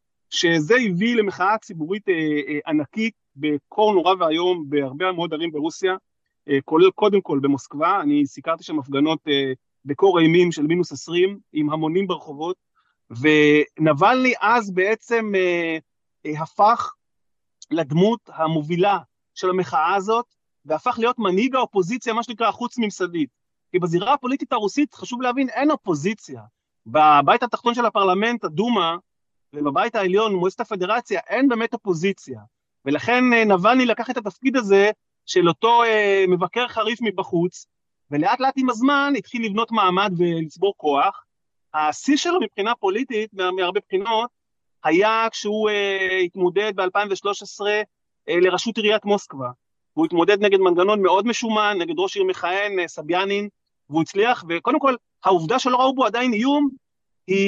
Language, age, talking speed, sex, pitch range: Hebrew, 40-59, 140 wpm, male, 165-230 Hz